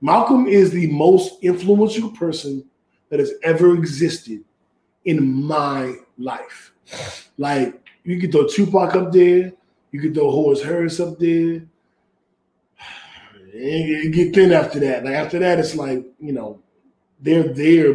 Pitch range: 140-175 Hz